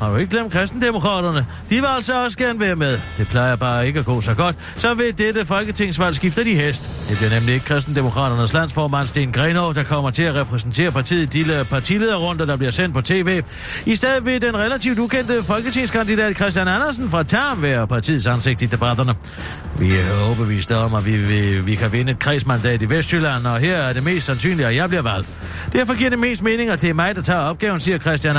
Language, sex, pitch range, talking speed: Danish, male, 130-190 Hz, 215 wpm